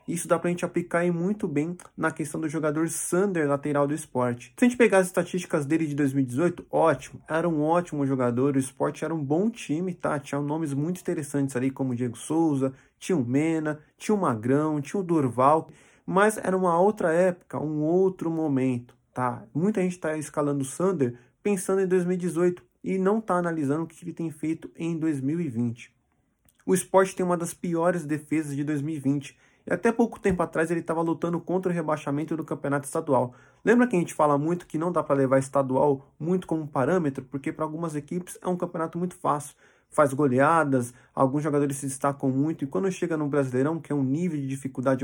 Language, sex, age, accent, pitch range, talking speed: Portuguese, male, 20-39, Brazilian, 140-175 Hz, 195 wpm